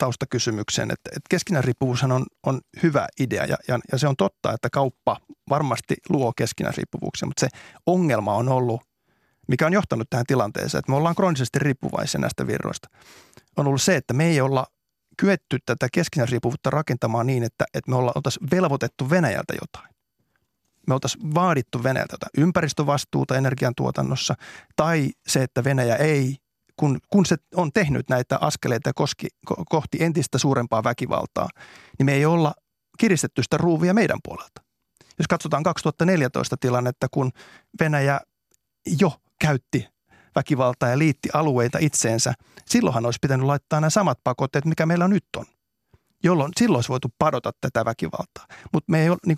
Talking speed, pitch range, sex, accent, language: 145 wpm, 125-165 Hz, male, native, Finnish